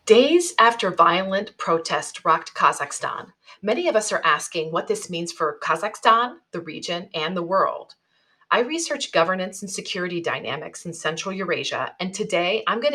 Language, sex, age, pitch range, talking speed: English, female, 40-59, 170-225 Hz, 160 wpm